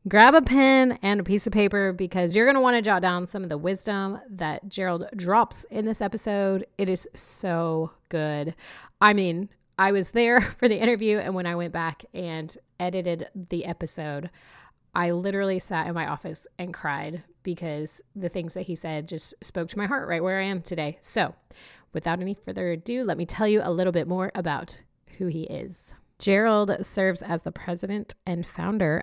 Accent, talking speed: American, 195 wpm